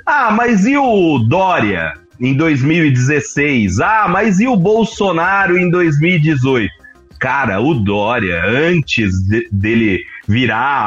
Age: 30-49